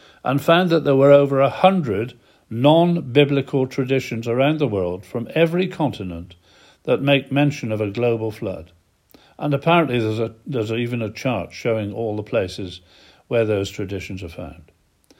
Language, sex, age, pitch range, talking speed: English, male, 50-69, 110-150 Hz, 160 wpm